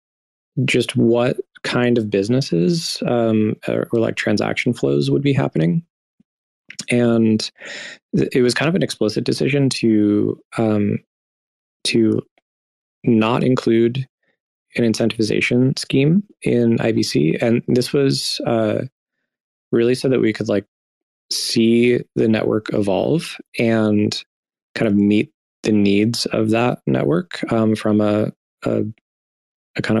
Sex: male